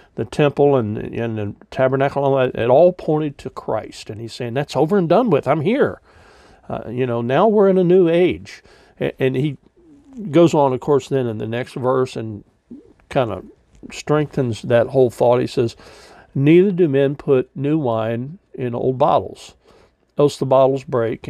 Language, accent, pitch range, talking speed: English, American, 115-140 Hz, 180 wpm